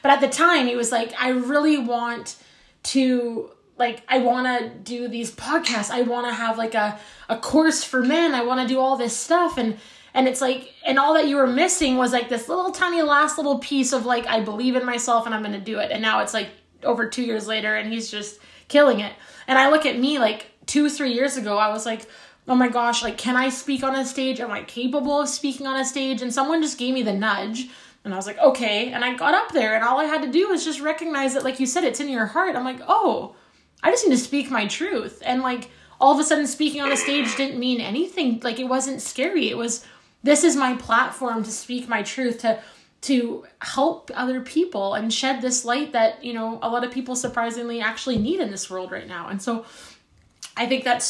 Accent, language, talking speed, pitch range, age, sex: American, English, 245 wpm, 225-280 Hz, 20-39, female